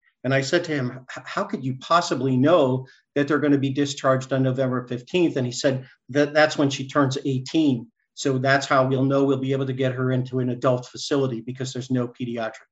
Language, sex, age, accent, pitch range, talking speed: English, male, 50-69, American, 130-145 Hz, 220 wpm